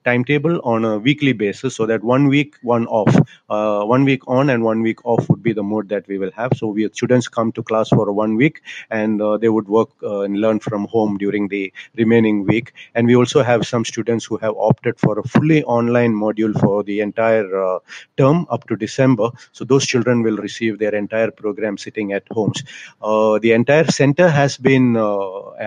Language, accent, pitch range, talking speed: English, Indian, 110-125 Hz, 210 wpm